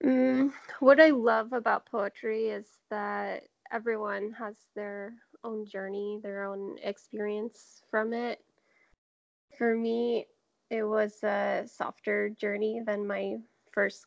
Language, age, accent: English, 10-29, American